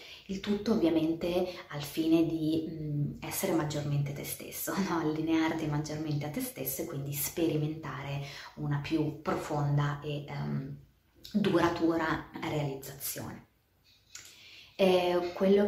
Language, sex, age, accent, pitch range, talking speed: Italian, female, 20-39, native, 145-165 Hz, 95 wpm